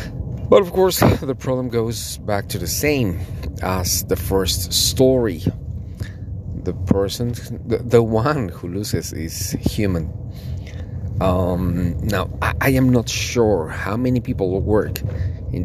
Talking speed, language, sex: 125 wpm, English, male